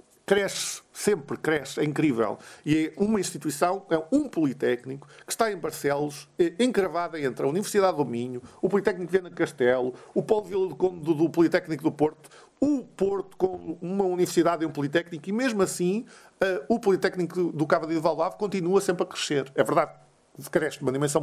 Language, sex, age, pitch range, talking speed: Portuguese, male, 50-69, 150-190 Hz, 185 wpm